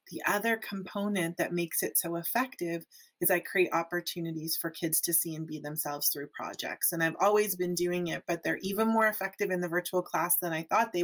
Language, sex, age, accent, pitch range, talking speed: English, female, 30-49, American, 165-195 Hz, 215 wpm